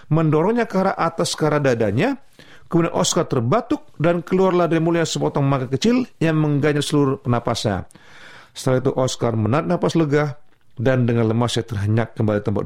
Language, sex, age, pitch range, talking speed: Indonesian, male, 40-59, 125-175 Hz, 155 wpm